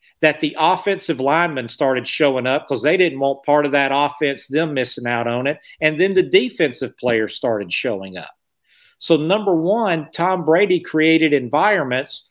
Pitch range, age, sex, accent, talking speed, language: 135-175 Hz, 50-69, male, American, 170 wpm, English